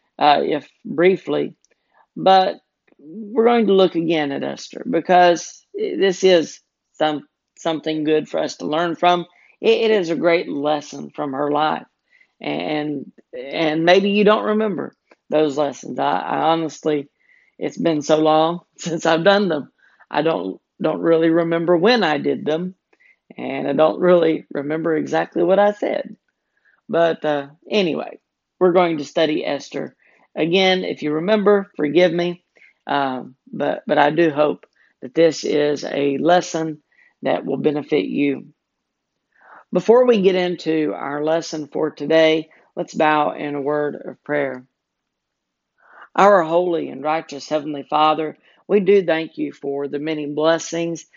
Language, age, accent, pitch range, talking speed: English, 40-59, American, 150-180 Hz, 150 wpm